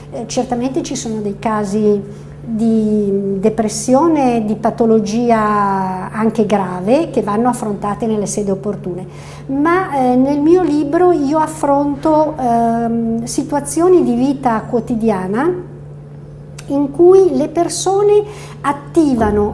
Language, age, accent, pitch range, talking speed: Italian, 50-69, native, 220-280 Hz, 105 wpm